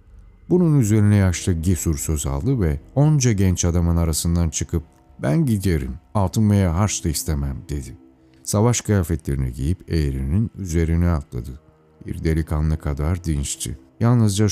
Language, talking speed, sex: Turkish, 125 wpm, male